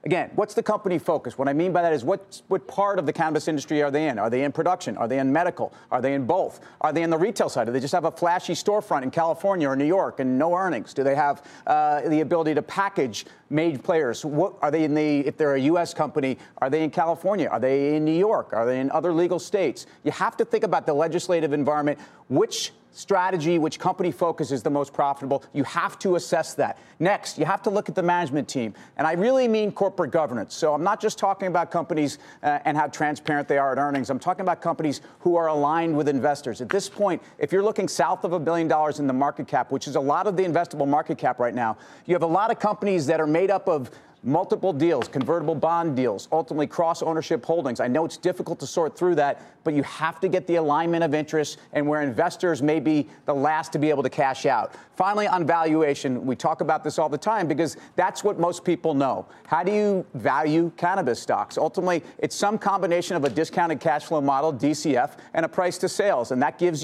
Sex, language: male, English